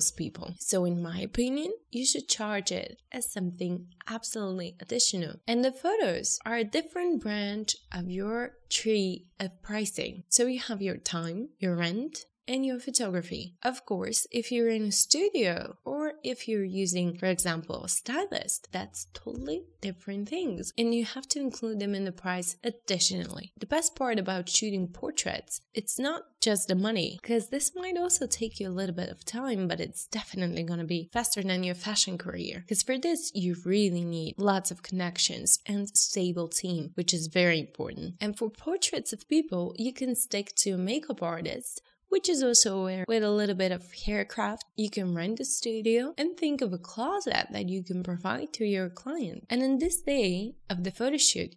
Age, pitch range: 20-39, 180-245 Hz